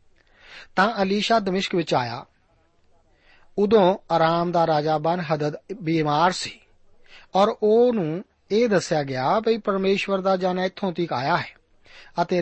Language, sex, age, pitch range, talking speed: Punjabi, male, 40-59, 150-180 Hz, 135 wpm